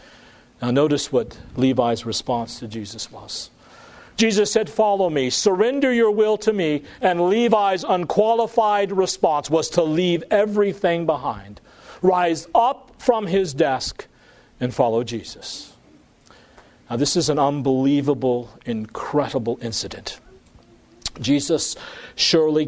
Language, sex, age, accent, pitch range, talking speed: English, male, 40-59, American, 125-180 Hz, 115 wpm